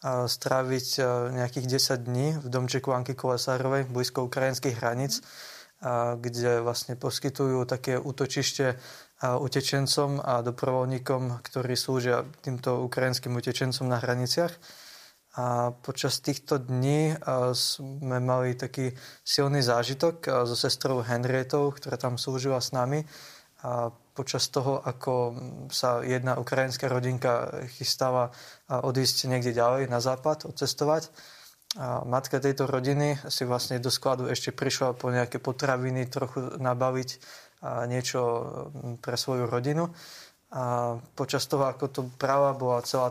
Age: 20-39